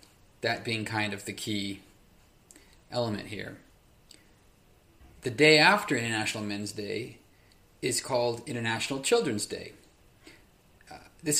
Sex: male